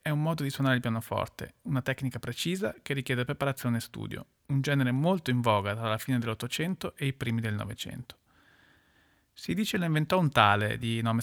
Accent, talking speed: native, 205 wpm